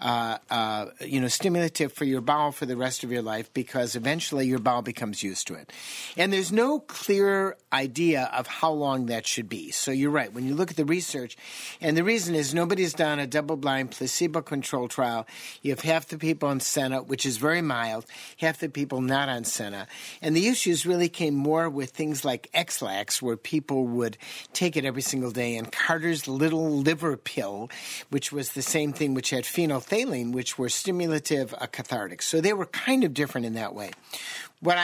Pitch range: 130-170 Hz